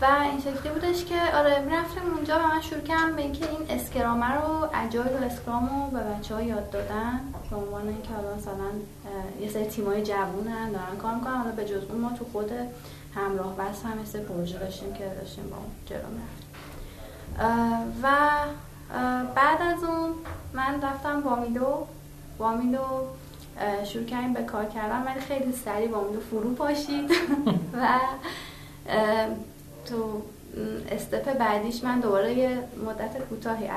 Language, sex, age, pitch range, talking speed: Persian, female, 30-49, 210-275 Hz, 150 wpm